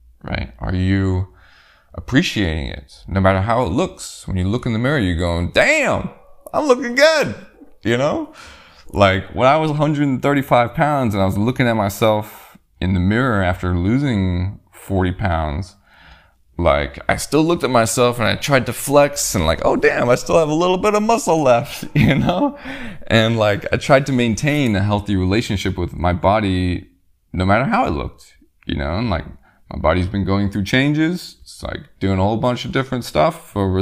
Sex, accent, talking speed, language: male, American, 190 wpm, English